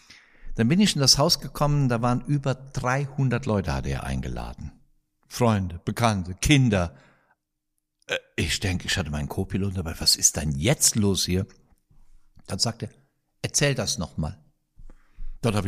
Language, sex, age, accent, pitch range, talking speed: German, male, 60-79, German, 95-130 Hz, 150 wpm